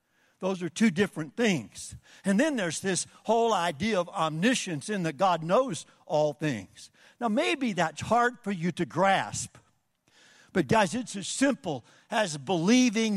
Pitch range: 165-225 Hz